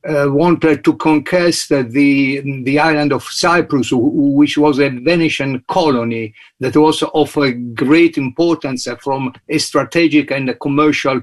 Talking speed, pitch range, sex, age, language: 150 wpm, 130-155 Hz, male, 50-69, English